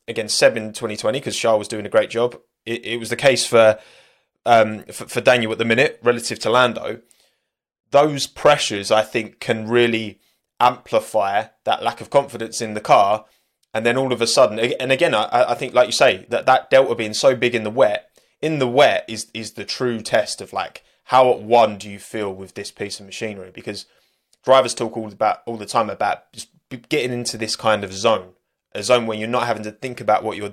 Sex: male